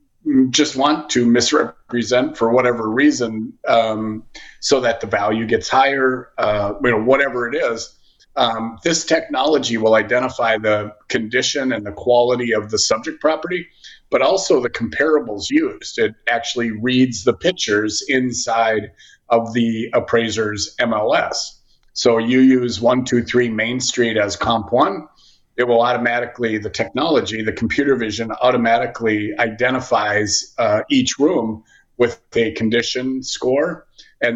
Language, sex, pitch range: English, male, 110-130 Hz